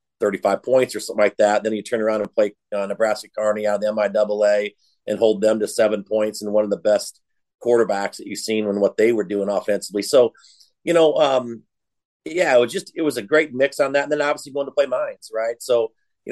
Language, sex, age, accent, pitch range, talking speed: English, male, 40-59, American, 105-130 Hz, 240 wpm